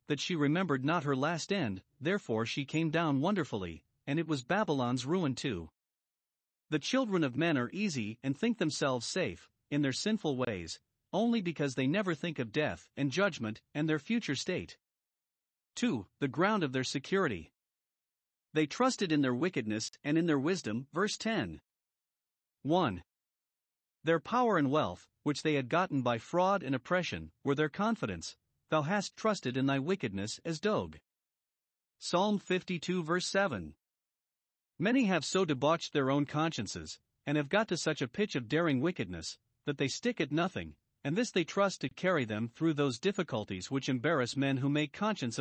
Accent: American